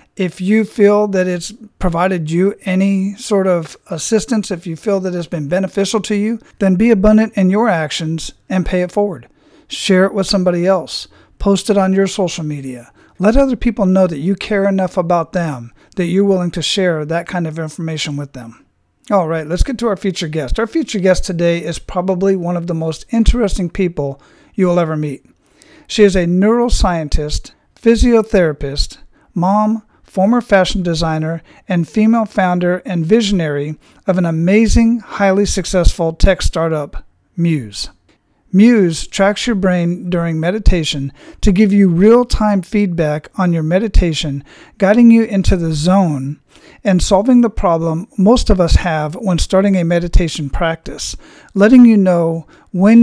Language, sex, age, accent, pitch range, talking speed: English, male, 50-69, American, 170-205 Hz, 165 wpm